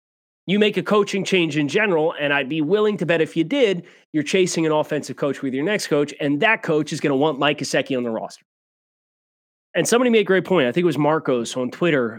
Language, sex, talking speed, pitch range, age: English, male, 245 wpm, 130-170 Hz, 30-49